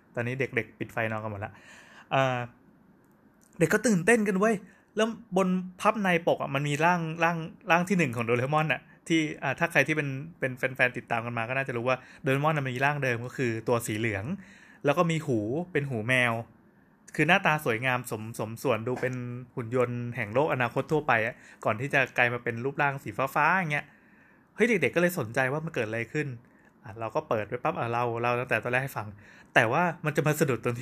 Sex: male